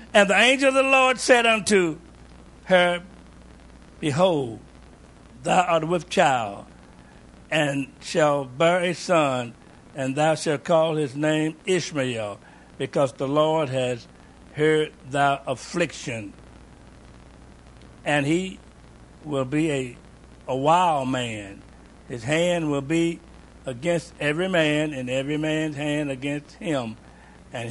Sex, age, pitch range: male, 60-79, 100-150 Hz